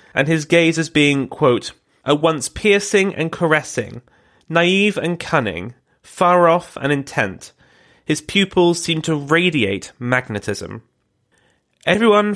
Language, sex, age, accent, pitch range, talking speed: English, male, 30-49, British, 130-165 Hz, 120 wpm